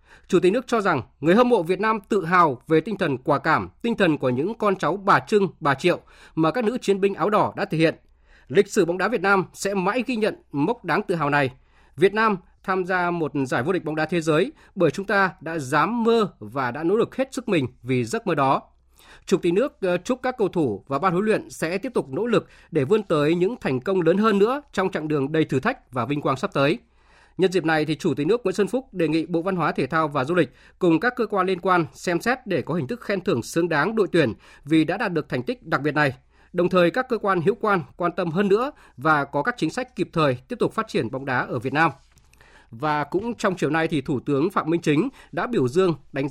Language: Vietnamese